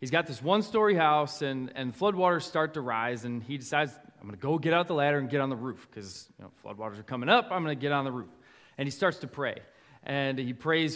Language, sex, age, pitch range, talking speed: English, male, 20-39, 140-195 Hz, 270 wpm